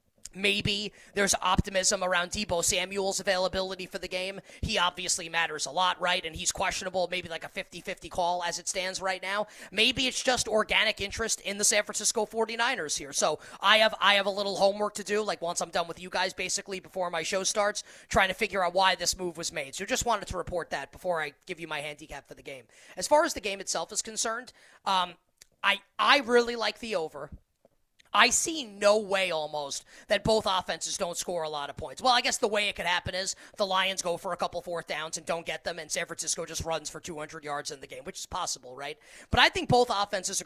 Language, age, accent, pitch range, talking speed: English, 30-49, American, 175-210 Hz, 235 wpm